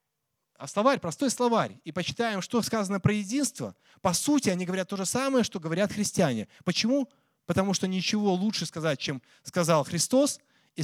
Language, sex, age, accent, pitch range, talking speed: Russian, male, 20-39, native, 150-220 Hz, 165 wpm